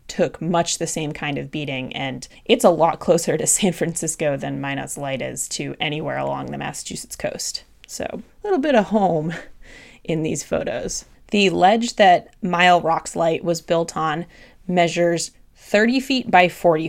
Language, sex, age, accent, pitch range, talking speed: English, female, 20-39, American, 155-195 Hz, 170 wpm